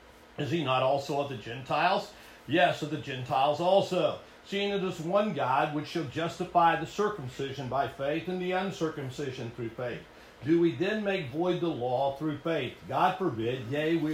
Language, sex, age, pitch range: English, male, 50-69, 145-185 Hz